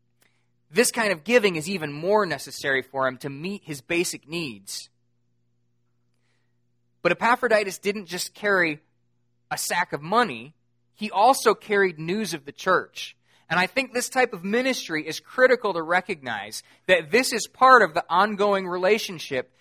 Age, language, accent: 20-39, English, American